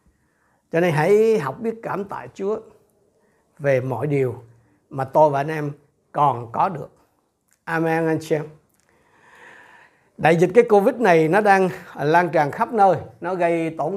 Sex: male